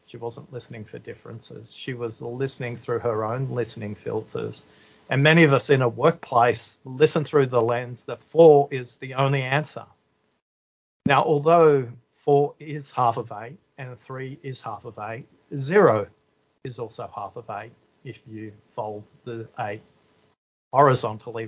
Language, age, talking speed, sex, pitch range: English, 40-59, 155 wpm, male, 115-140 Hz